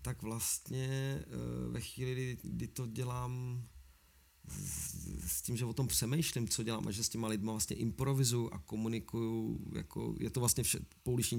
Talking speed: 160 wpm